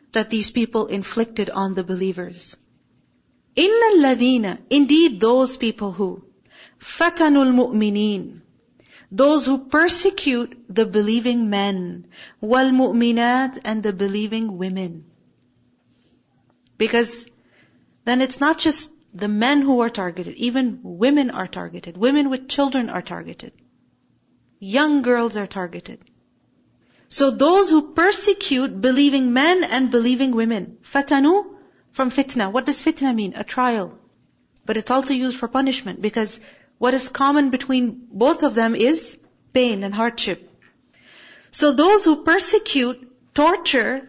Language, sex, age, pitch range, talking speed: English, female, 40-59, 220-285 Hz, 120 wpm